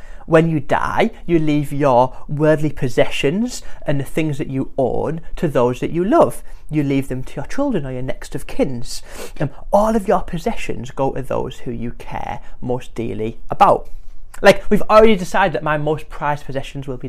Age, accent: 30-49, British